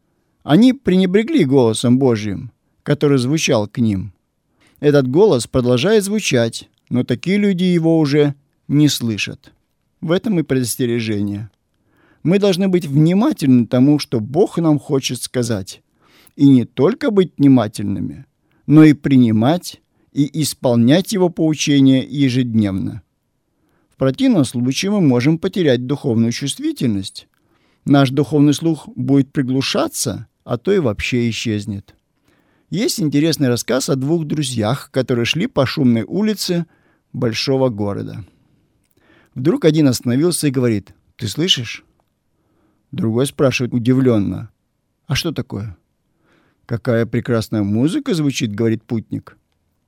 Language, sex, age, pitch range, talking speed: Russian, male, 50-69, 115-155 Hz, 115 wpm